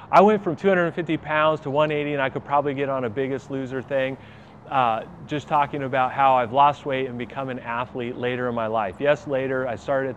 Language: English